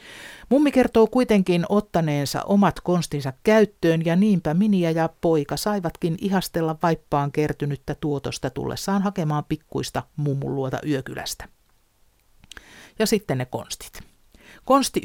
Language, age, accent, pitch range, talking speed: Finnish, 50-69, native, 150-205 Hz, 110 wpm